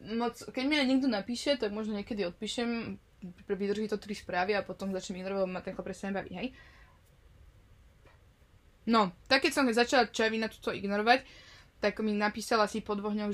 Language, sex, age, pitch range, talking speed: Slovak, female, 20-39, 190-230 Hz, 170 wpm